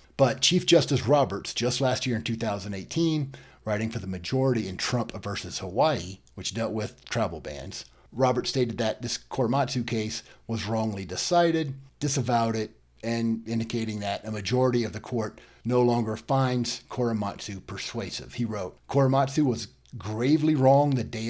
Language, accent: English, American